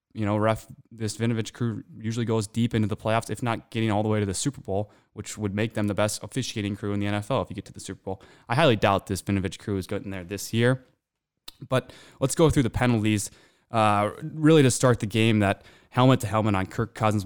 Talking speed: 235 wpm